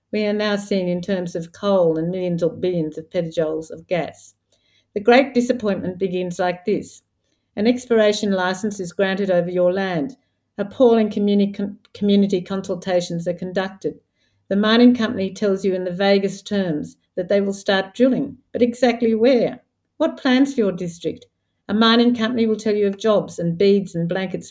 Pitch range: 180-215 Hz